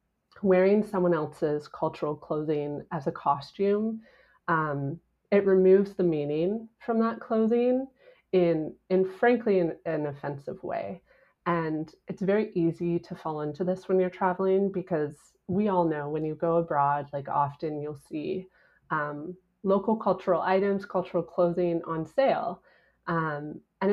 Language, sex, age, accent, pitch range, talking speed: English, female, 30-49, American, 155-195 Hz, 140 wpm